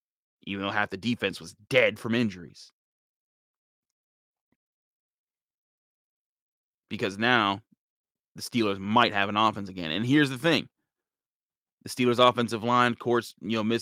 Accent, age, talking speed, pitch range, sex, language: American, 30-49, 130 wpm, 105-120 Hz, male, English